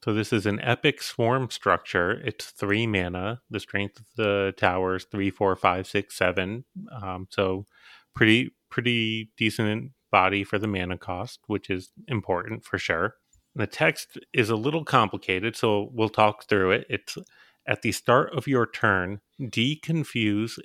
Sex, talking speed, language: male, 155 wpm, English